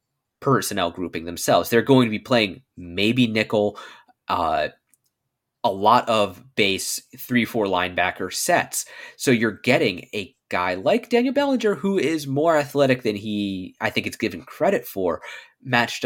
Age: 20-39